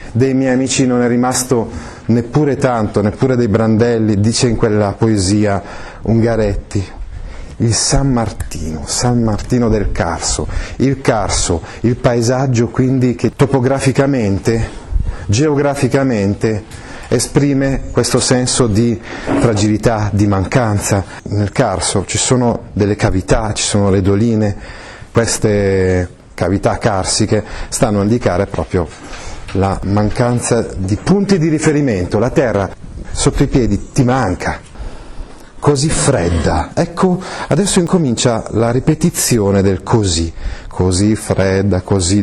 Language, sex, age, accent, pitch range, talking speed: Italian, male, 30-49, native, 100-130 Hz, 115 wpm